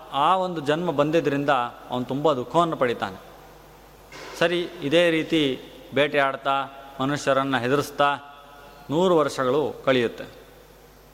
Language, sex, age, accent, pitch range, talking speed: Kannada, male, 30-49, native, 140-185 Hz, 90 wpm